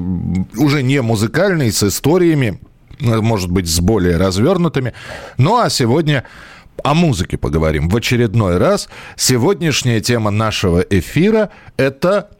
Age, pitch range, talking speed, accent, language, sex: 40-59, 95-135 Hz, 120 wpm, native, Russian, male